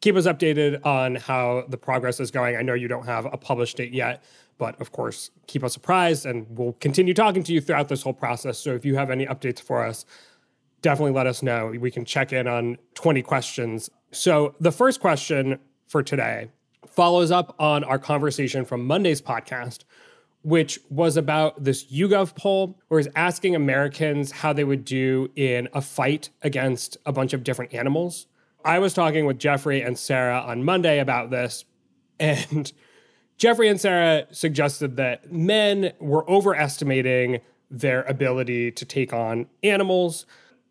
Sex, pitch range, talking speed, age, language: male, 125-160 Hz, 170 wpm, 30-49, English